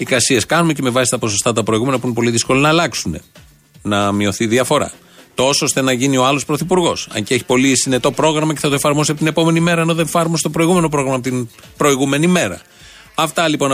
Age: 40-59